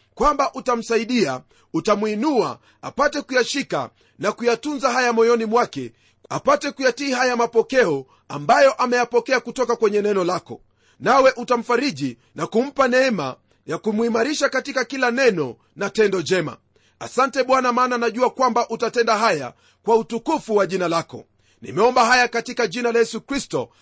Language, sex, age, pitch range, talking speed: Swahili, male, 40-59, 195-255 Hz, 130 wpm